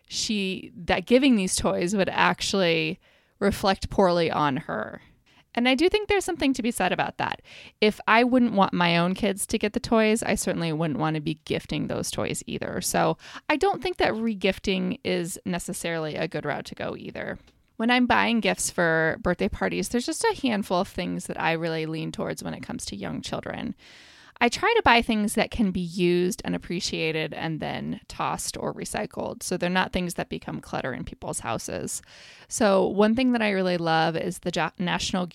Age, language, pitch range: 20-39, English, 170-225 Hz